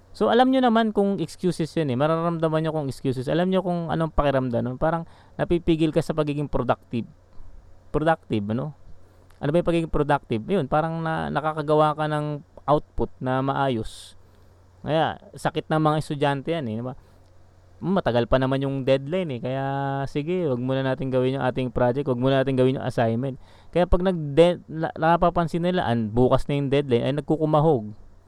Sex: male